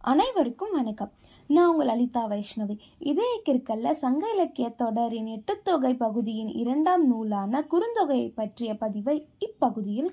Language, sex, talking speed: Tamil, female, 115 wpm